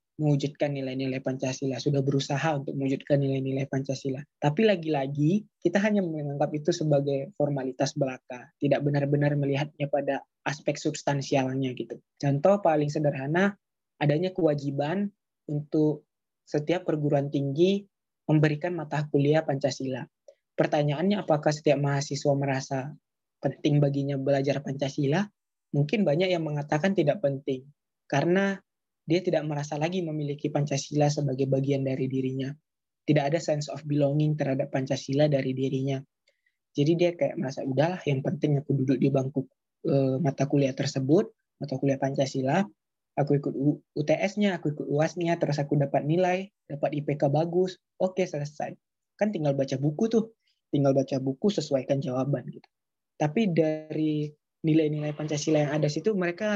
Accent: native